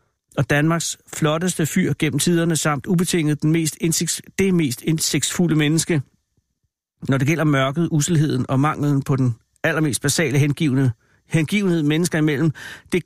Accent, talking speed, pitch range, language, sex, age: native, 140 wpm, 135-165 Hz, Danish, male, 60-79